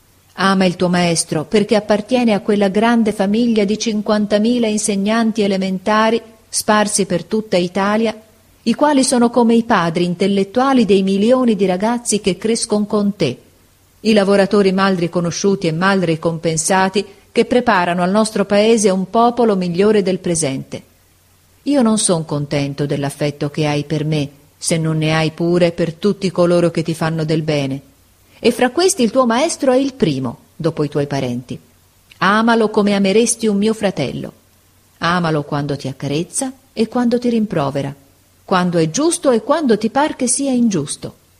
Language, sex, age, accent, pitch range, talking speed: Italian, female, 40-59, native, 150-215 Hz, 160 wpm